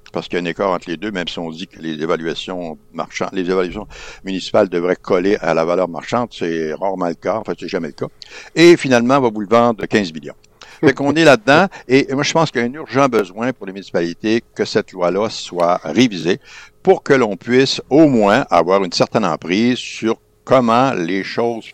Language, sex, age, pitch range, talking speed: French, male, 60-79, 90-125 Hz, 225 wpm